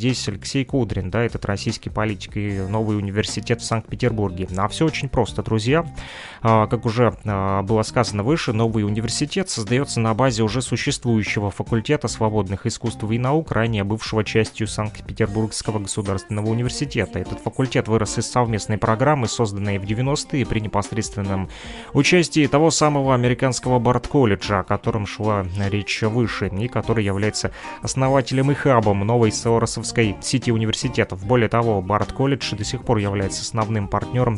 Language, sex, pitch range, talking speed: Russian, male, 105-125 Hz, 140 wpm